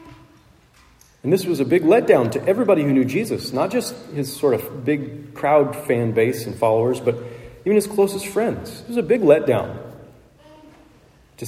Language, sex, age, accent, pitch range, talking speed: English, male, 40-59, American, 115-145 Hz, 175 wpm